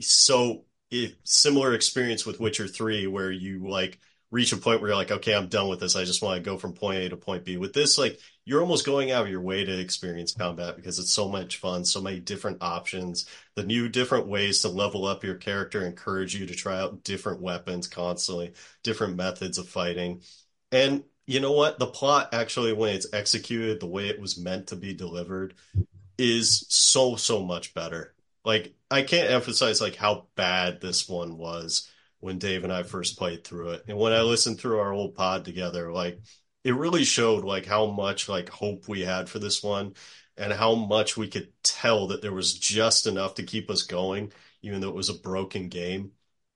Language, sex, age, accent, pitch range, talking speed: English, male, 30-49, American, 90-110 Hz, 210 wpm